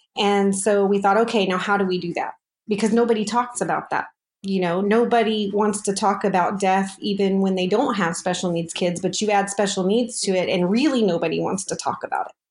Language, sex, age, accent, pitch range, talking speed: English, female, 30-49, American, 185-230 Hz, 225 wpm